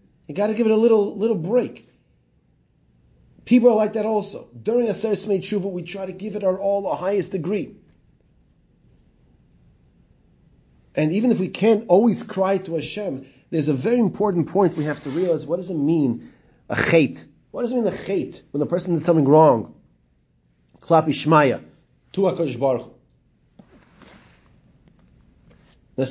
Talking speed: 160 wpm